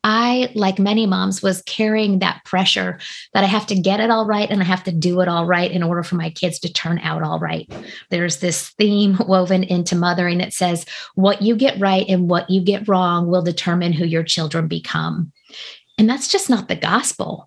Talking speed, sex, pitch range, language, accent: 215 wpm, female, 175-205 Hz, English, American